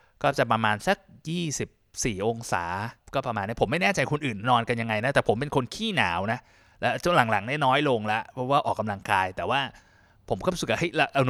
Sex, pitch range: male, 110-145 Hz